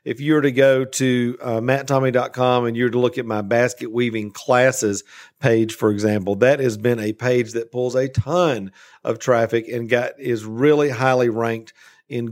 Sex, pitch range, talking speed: male, 115-145 Hz, 190 wpm